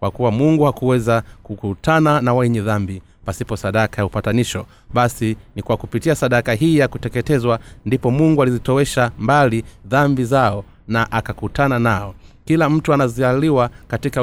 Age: 30-49